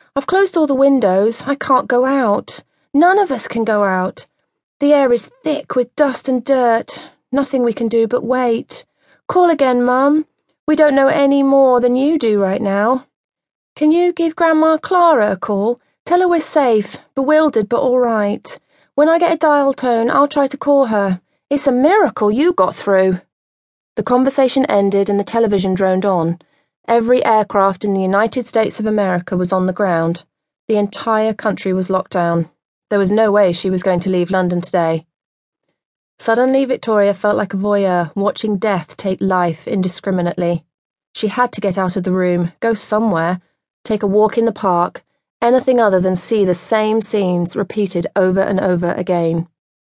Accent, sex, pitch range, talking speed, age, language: British, female, 190-260 Hz, 180 wpm, 30-49, English